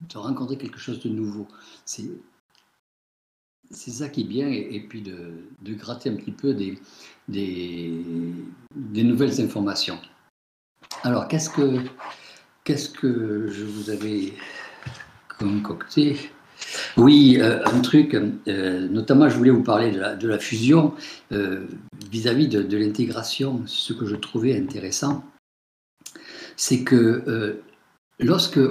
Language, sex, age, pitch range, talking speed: French, male, 60-79, 100-140 Hz, 120 wpm